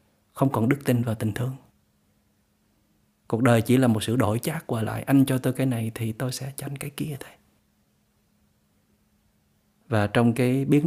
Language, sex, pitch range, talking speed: Vietnamese, male, 105-125 Hz, 190 wpm